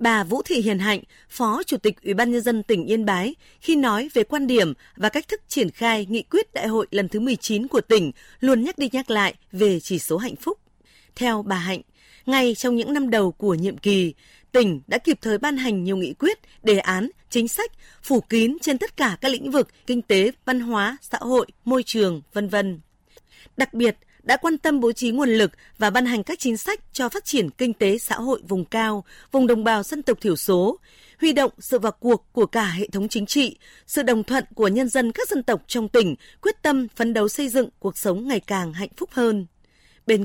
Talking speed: 230 wpm